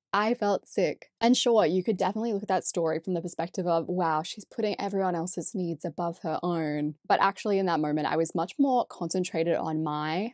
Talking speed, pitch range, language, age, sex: 215 wpm, 160-195 Hz, English, 10-29, female